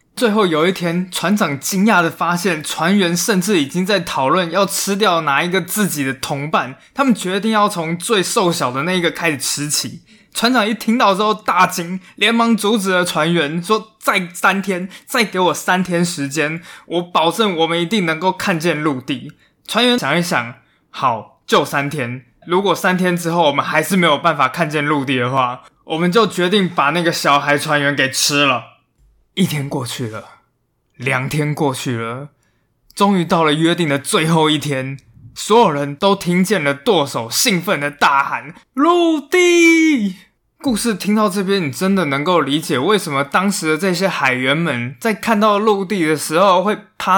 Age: 20-39